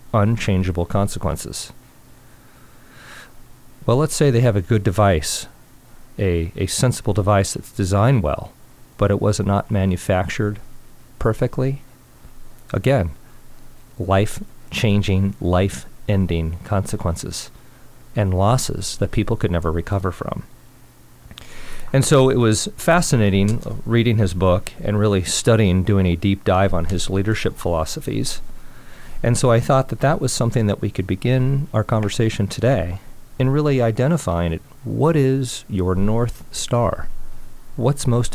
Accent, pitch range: American, 95-125 Hz